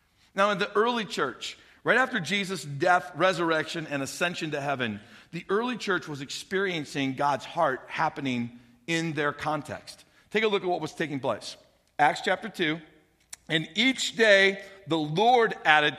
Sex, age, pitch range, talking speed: male, 50-69, 155-210 Hz, 160 wpm